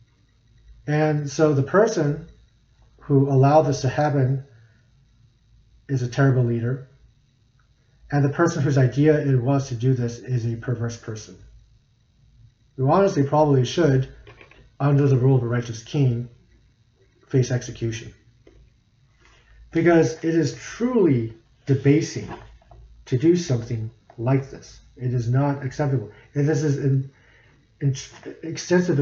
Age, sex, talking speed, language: 40-59, male, 125 wpm, English